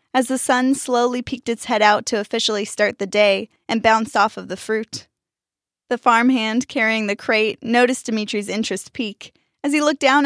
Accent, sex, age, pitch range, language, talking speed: American, female, 10-29, 200-240 Hz, English, 185 wpm